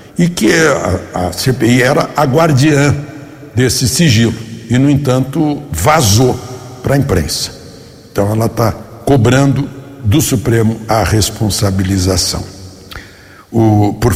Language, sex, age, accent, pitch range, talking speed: Portuguese, male, 60-79, Brazilian, 110-150 Hz, 105 wpm